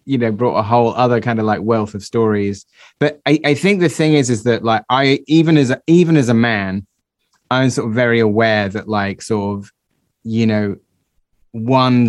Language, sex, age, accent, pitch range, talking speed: English, male, 20-39, British, 110-130 Hz, 210 wpm